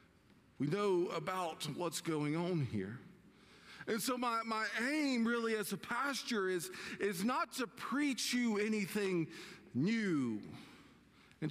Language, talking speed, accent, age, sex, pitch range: English, 130 wpm, American, 50-69, male, 135-200 Hz